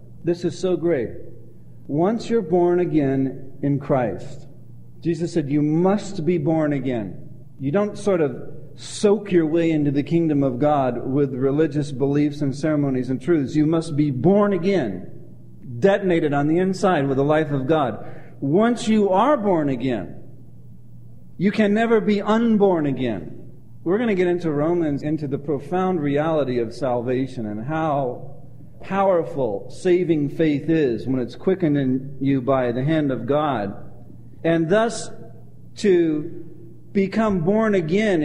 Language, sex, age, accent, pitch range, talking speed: English, male, 40-59, American, 135-185 Hz, 150 wpm